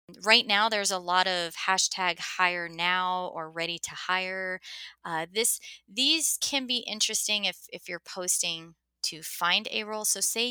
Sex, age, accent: female, 20-39, American